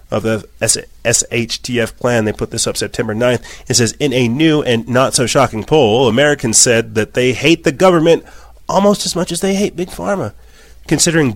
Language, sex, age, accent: English, male, 30-49, American